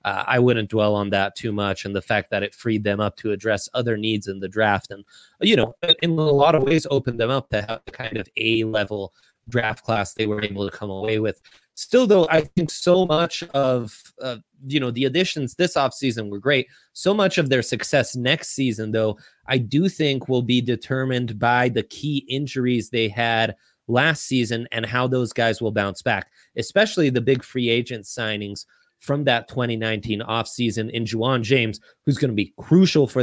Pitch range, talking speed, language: 110-140 Hz, 205 wpm, English